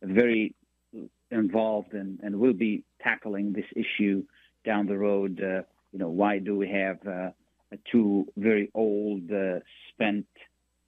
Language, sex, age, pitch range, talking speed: Arabic, male, 50-69, 95-110 Hz, 145 wpm